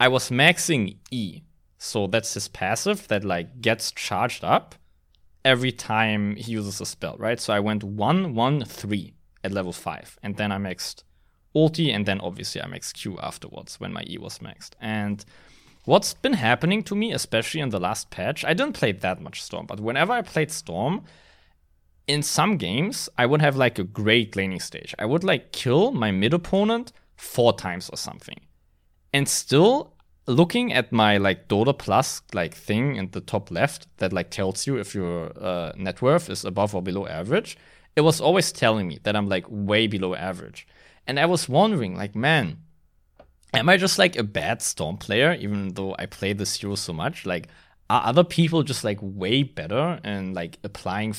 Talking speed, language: 190 wpm, English